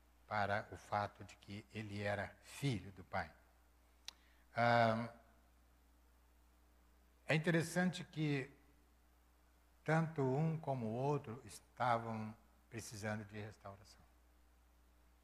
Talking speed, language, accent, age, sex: 85 wpm, Portuguese, Brazilian, 60-79, male